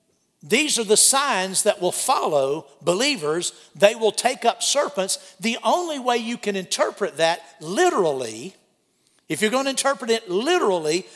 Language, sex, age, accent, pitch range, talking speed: English, male, 50-69, American, 195-265 Hz, 145 wpm